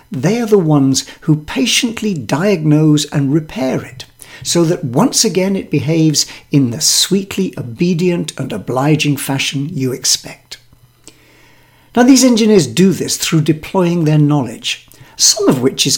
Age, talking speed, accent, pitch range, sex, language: 60-79, 145 wpm, British, 135-195 Hz, male, English